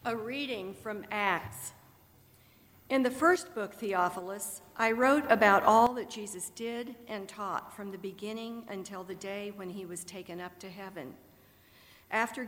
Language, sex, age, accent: English, female, 50-69, American